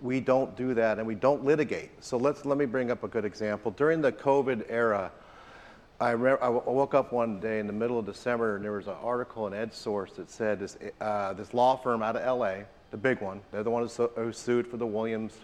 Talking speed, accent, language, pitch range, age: 240 wpm, American, English, 110-135 Hz, 40-59